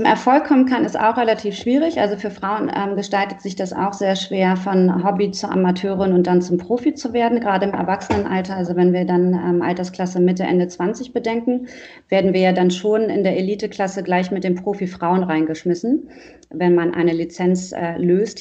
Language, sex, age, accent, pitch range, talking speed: German, female, 30-49, German, 175-200 Hz, 190 wpm